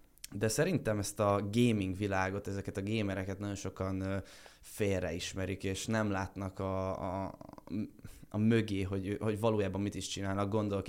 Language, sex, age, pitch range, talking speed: Hungarian, male, 20-39, 95-105 Hz, 145 wpm